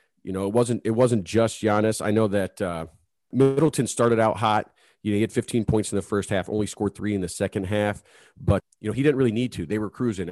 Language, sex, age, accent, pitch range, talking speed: English, male, 30-49, American, 95-115 Hz, 255 wpm